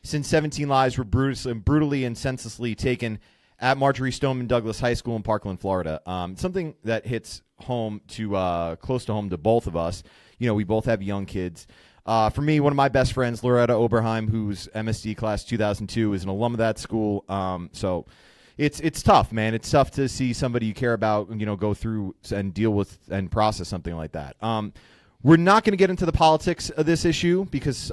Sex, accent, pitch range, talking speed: male, American, 105-140 Hz, 215 wpm